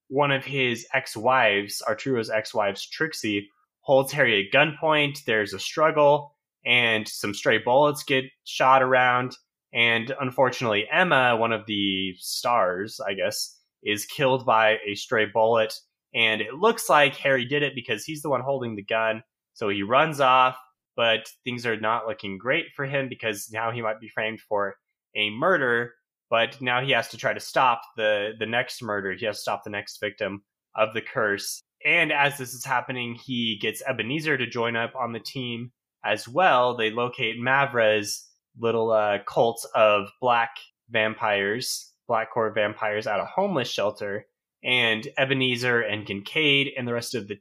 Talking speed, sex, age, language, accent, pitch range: 170 wpm, male, 20-39, English, American, 110-135 Hz